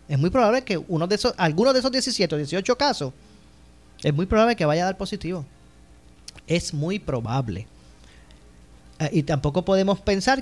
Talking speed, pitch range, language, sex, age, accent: 165 wpm, 130-195 Hz, Spanish, male, 30-49, American